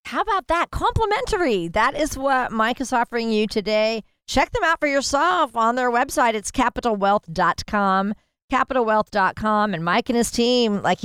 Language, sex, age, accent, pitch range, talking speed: English, female, 50-69, American, 180-240 Hz, 160 wpm